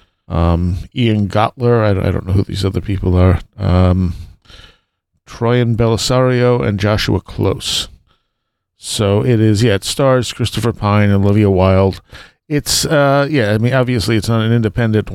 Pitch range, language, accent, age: 100-120 Hz, English, American, 40-59